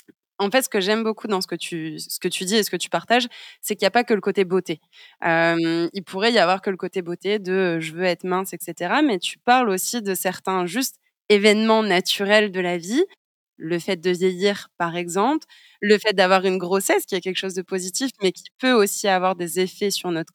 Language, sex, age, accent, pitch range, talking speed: French, female, 20-39, French, 175-210 Hz, 245 wpm